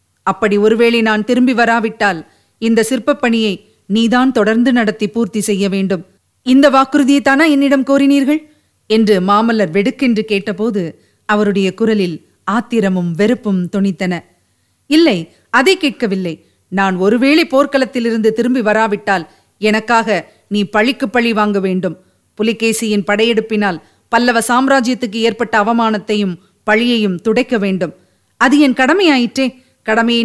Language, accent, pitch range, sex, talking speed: Tamil, native, 195-235 Hz, female, 105 wpm